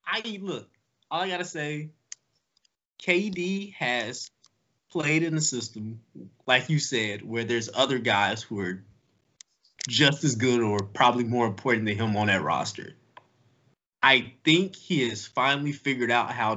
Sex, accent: male, American